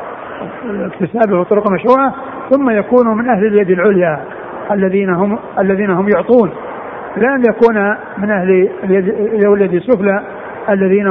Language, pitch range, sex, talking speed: Arabic, 190-215 Hz, male, 120 wpm